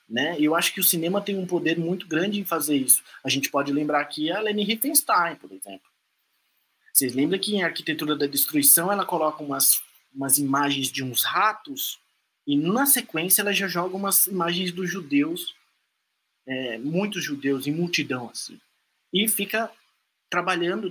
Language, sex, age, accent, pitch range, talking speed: Portuguese, male, 20-39, Brazilian, 145-205 Hz, 165 wpm